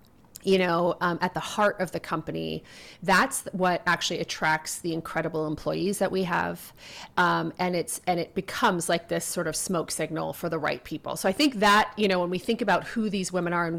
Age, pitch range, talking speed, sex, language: 30-49, 170-205 Hz, 220 wpm, female, English